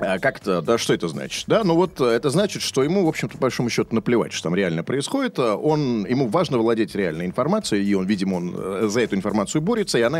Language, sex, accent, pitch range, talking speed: Russian, male, native, 110-175 Hz, 225 wpm